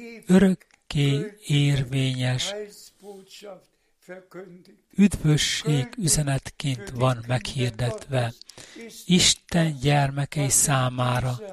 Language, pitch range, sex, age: Hungarian, 135-175 Hz, male, 60-79